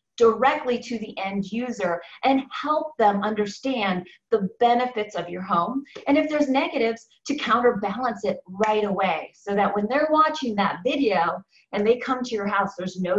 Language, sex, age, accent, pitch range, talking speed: English, female, 30-49, American, 200-265 Hz, 175 wpm